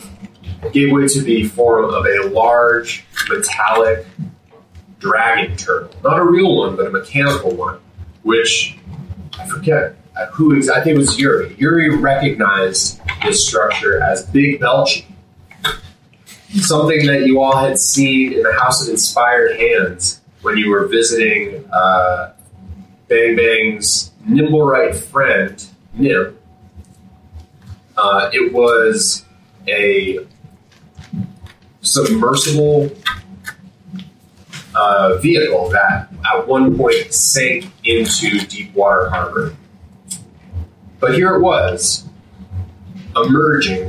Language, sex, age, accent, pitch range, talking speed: English, male, 30-49, American, 95-150 Hz, 105 wpm